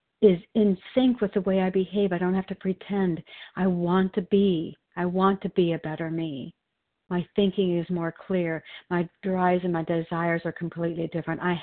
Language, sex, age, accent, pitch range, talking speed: English, female, 60-79, American, 165-195 Hz, 195 wpm